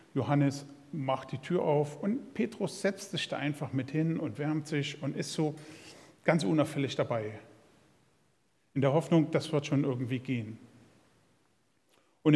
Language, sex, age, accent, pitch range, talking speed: German, male, 50-69, German, 130-165 Hz, 150 wpm